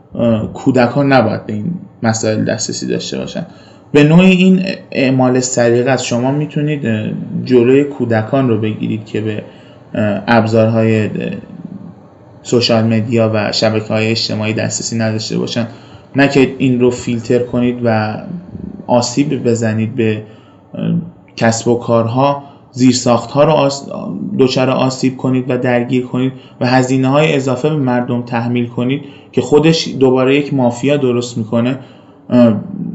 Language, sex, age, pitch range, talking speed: Persian, male, 20-39, 115-135 Hz, 130 wpm